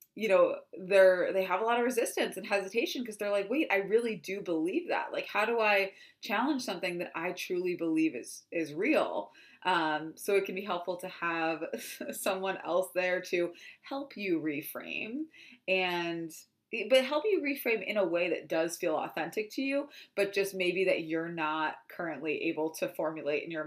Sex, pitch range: female, 165-220 Hz